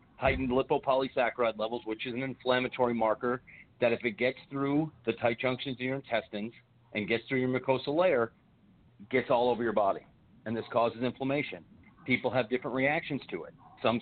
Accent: American